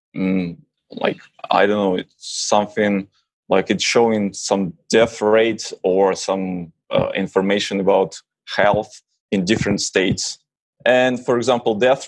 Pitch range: 100-130 Hz